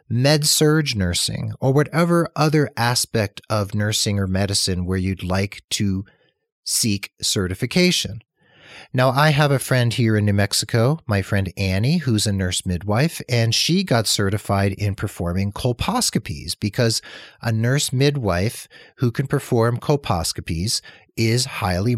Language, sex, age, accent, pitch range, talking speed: English, male, 40-59, American, 100-145 Hz, 135 wpm